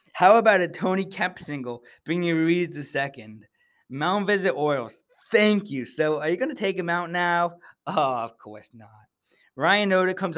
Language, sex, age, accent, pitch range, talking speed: English, male, 20-39, American, 130-170 Hz, 180 wpm